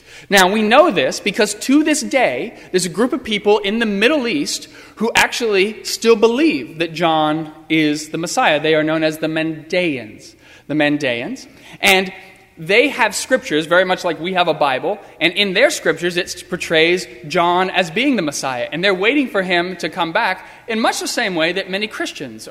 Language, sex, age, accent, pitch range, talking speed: English, male, 30-49, American, 155-205 Hz, 190 wpm